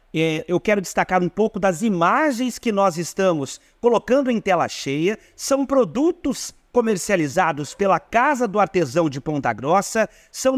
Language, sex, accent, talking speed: Portuguese, male, Brazilian, 140 wpm